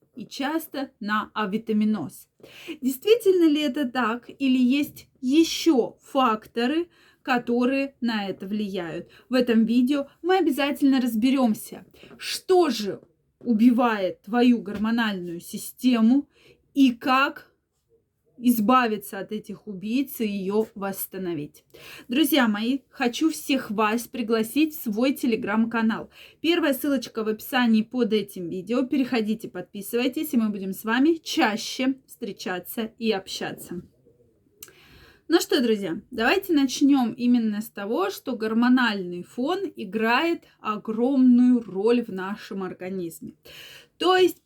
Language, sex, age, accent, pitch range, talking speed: Russian, female, 20-39, native, 215-280 Hz, 110 wpm